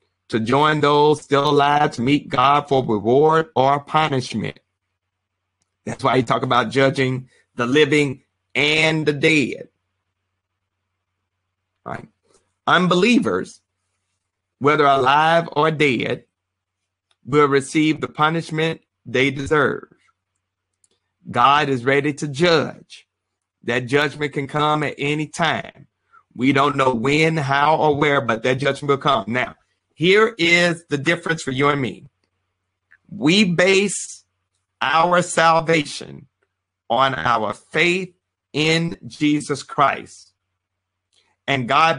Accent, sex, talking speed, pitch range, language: American, male, 115 wpm, 95-155 Hz, English